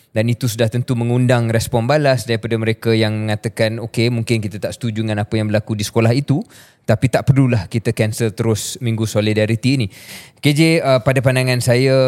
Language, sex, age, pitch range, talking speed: Malay, male, 20-39, 110-130 Hz, 185 wpm